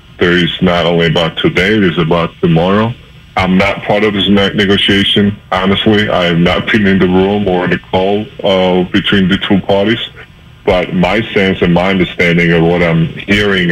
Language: English